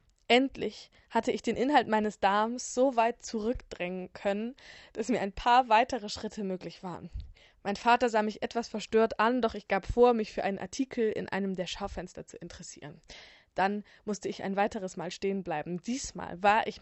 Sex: female